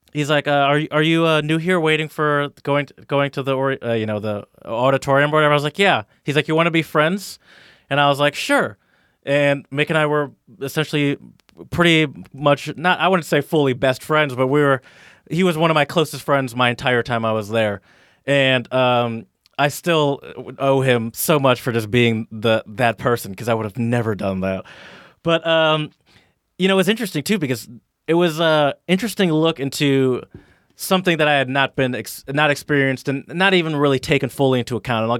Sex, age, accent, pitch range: male, 20-39, American, 120-150 Hz